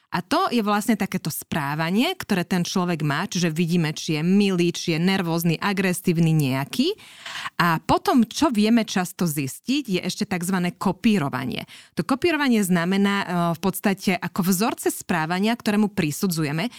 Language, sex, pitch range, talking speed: Slovak, female, 175-220 Hz, 145 wpm